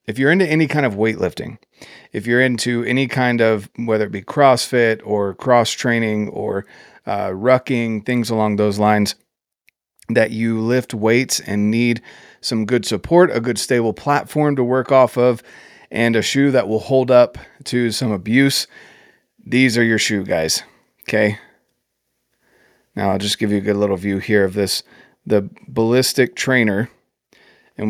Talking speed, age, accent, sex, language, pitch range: 165 wpm, 30-49, American, male, English, 110-130 Hz